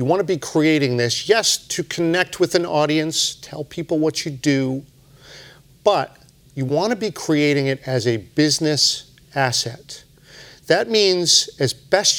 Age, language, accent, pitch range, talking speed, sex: 50-69, English, American, 135-170 Hz, 160 wpm, male